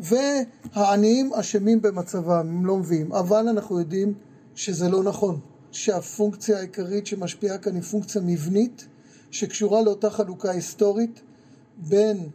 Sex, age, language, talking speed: male, 40-59, Hebrew, 115 wpm